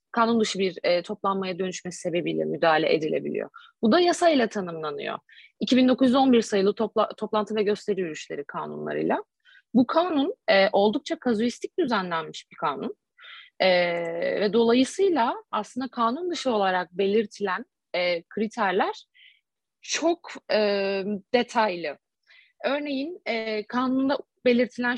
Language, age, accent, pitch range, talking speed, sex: Turkish, 30-49, native, 200-275 Hz, 110 wpm, female